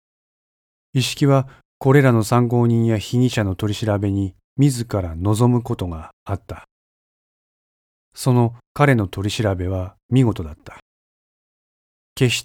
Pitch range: 95-125 Hz